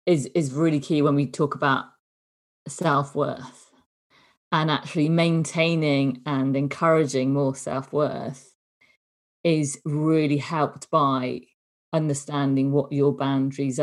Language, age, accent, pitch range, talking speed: English, 40-59, British, 140-155 Hz, 105 wpm